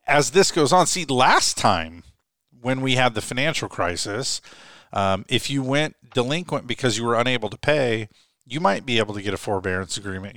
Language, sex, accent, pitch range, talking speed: English, male, American, 105-125 Hz, 190 wpm